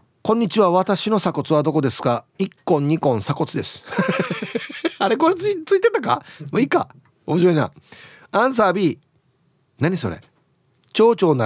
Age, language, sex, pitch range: 40-59, Japanese, male, 130-185 Hz